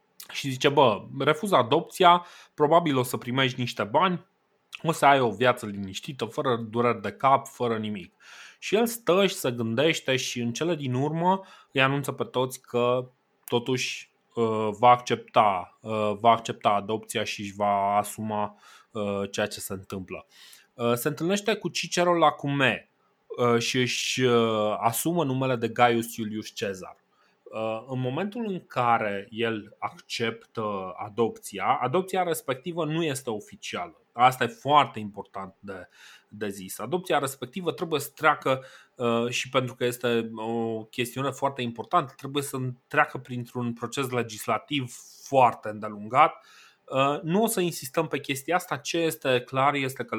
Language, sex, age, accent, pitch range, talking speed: Romanian, male, 20-39, native, 110-145 Hz, 140 wpm